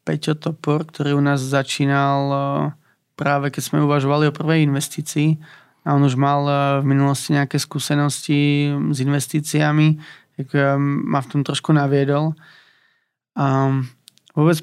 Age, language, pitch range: 20-39, Slovak, 140-155 Hz